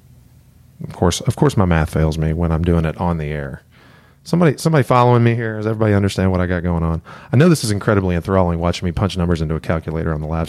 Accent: American